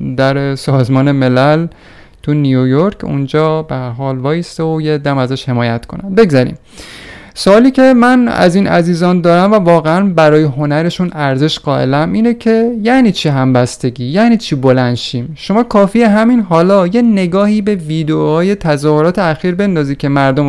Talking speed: 150 wpm